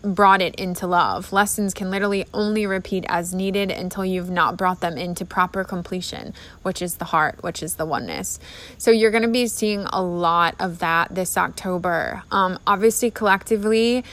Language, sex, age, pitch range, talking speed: English, female, 20-39, 185-205 Hz, 180 wpm